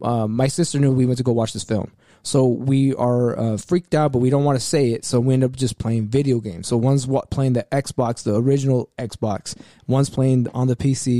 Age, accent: 20-39, American